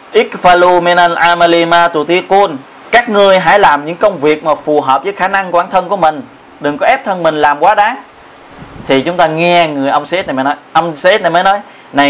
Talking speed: 200 wpm